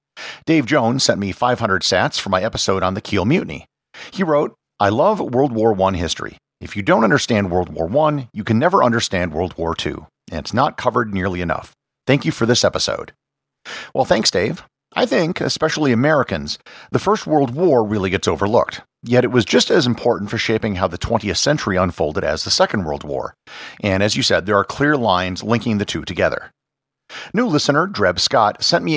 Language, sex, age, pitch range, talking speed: English, male, 50-69, 100-140 Hz, 200 wpm